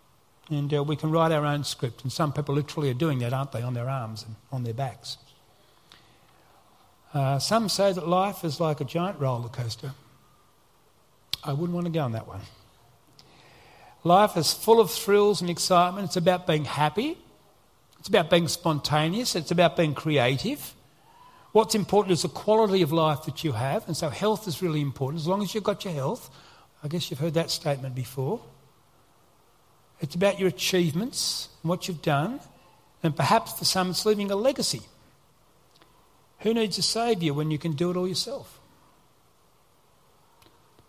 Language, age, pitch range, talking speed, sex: English, 60-79, 140-185 Hz, 175 wpm, male